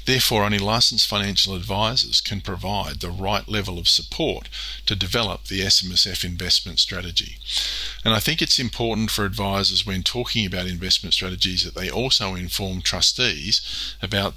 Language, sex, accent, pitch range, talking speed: English, male, Australian, 90-110 Hz, 150 wpm